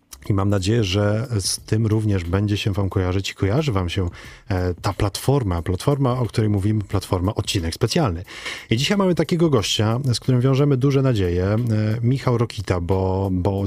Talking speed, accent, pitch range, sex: 165 wpm, native, 95-110 Hz, male